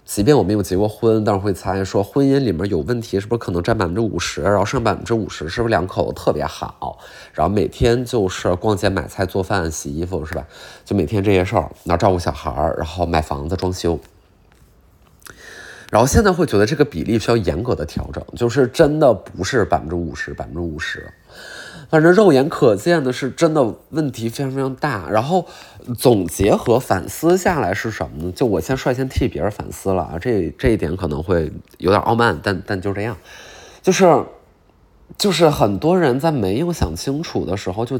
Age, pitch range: 20-39, 90-130 Hz